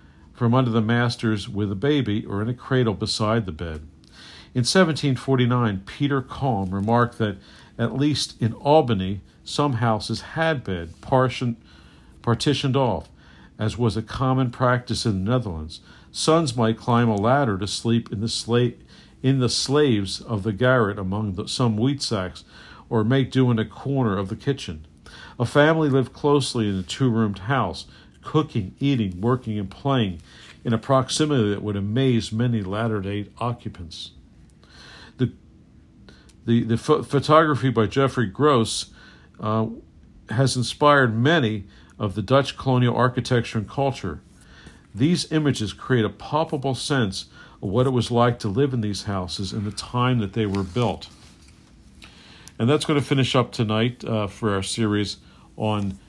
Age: 50-69